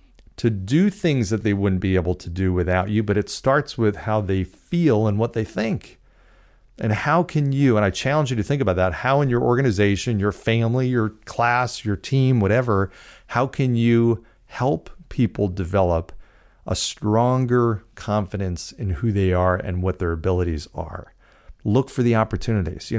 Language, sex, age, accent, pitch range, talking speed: English, male, 40-59, American, 100-135 Hz, 180 wpm